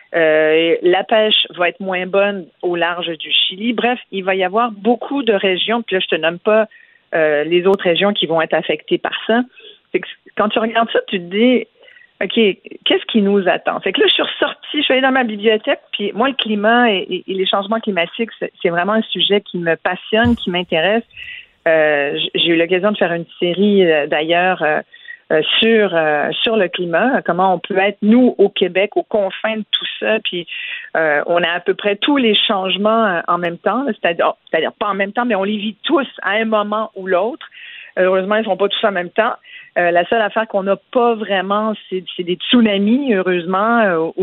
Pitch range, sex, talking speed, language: 175-225 Hz, female, 220 wpm, French